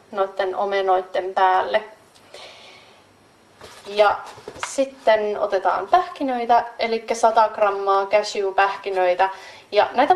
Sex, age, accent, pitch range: female, 30-49, native, 195-245 Hz